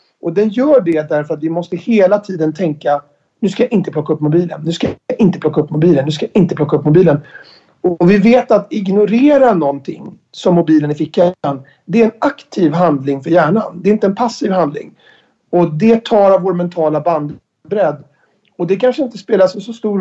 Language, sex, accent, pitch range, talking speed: English, male, Swedish, 160-210 Hz, 205 wpm